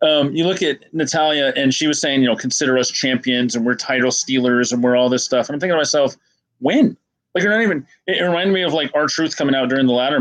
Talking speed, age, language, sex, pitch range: 265 wpm, 30-49, English, male, 125-155 Hz